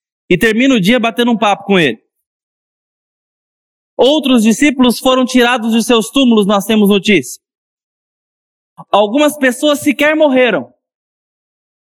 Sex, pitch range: male, 190-270 Hz